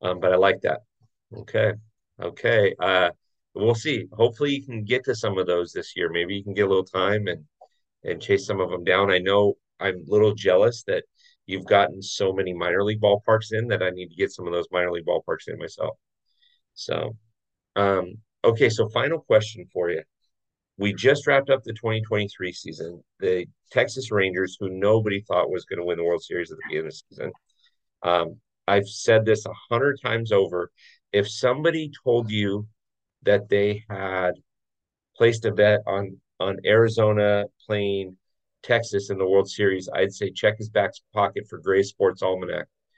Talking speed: 185 wpm